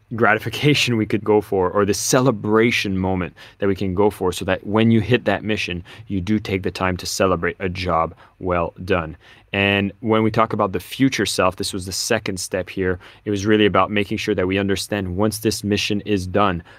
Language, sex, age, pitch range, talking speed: English, male, 20-39, 95-105 Hz, 215 wpm